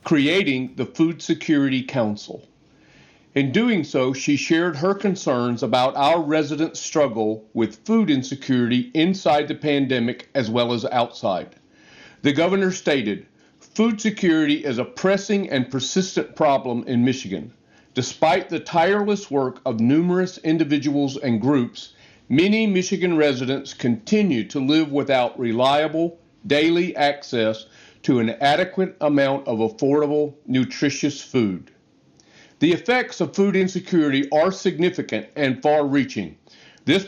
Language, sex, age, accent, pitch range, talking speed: English, male, 40-59, American, 130-175 Hz, 125 wpm